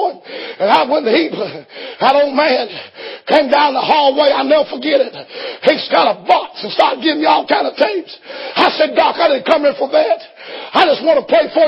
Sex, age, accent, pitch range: male, 50-69, American, 295-390 Hz